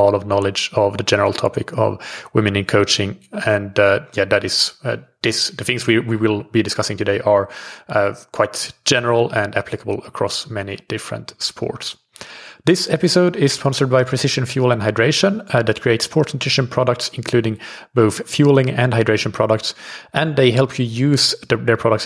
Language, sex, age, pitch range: English, male, 30-49, 110-135 Hz